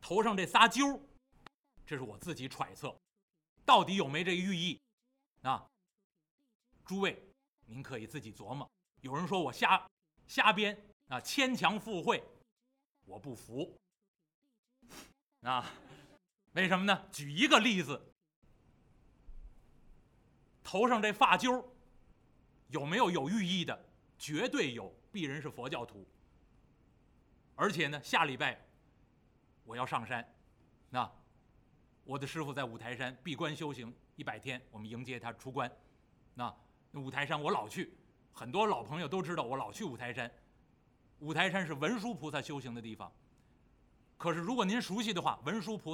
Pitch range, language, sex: 140-215 Hz, Chinese, male